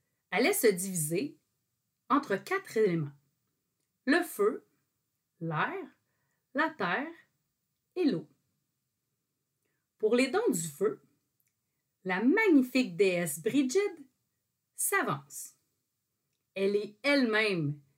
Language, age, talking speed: French, 40-59, 85 wpm